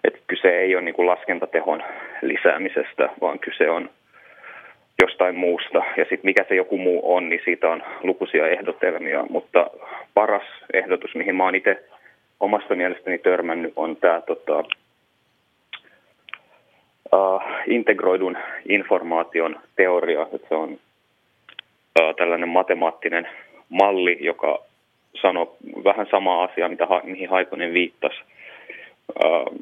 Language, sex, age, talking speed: Finnish, male, 30-49, 110 wpm